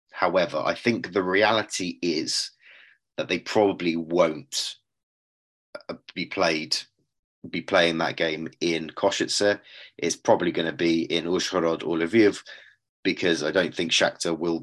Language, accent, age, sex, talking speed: English, British, 30-49, male, 135 wpm